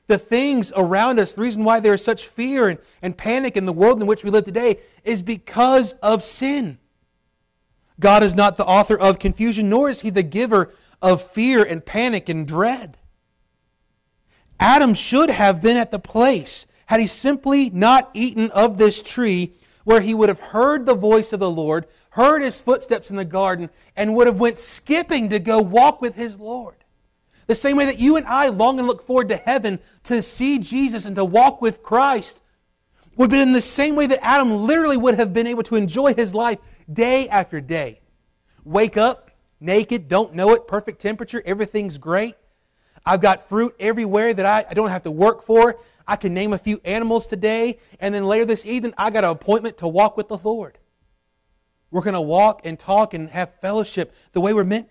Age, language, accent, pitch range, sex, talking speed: 30-49, English, American, 195-240 Hz, male, 200 wpm